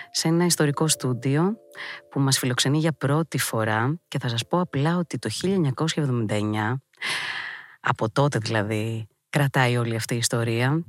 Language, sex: Greek, female